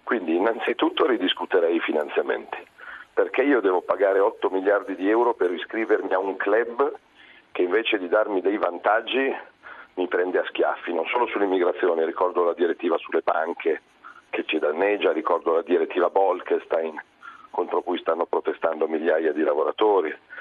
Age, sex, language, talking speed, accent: 40-59, male, Italian, 145 wpm, native